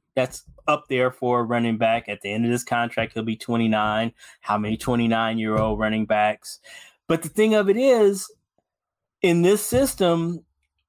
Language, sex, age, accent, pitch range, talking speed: English, male, 20-39, American, 110-140 Hz, 175 wpm